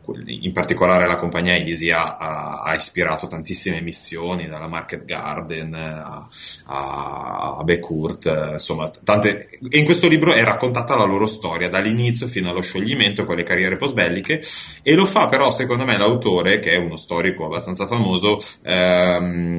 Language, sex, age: Italian, male, 30-49